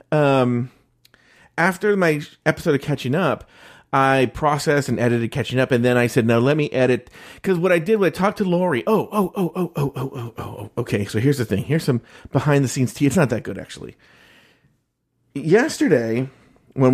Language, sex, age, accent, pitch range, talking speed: English, male, 40-59, American, 125-180 Hz, 195 wpm